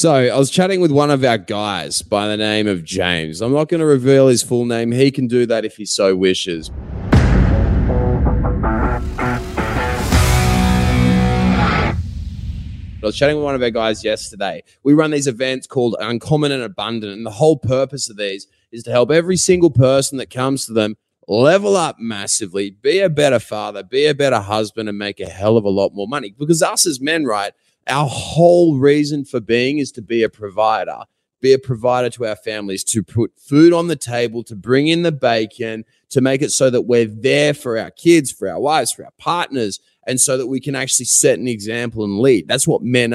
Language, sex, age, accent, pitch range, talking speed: English, male, 20-39, Australian, 105-140 Hz, 200 wpm